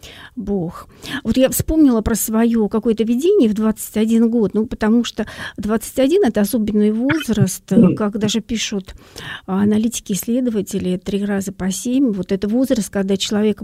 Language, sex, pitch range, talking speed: Russian, female, 200-240 Hz, 135 wpm